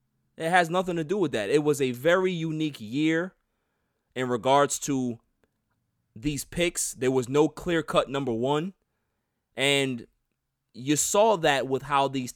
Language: English